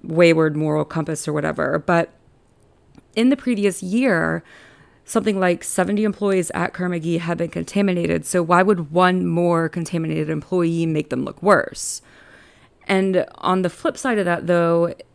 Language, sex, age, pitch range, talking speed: English, female, 30-49, 160-205 Hz, 150 wpm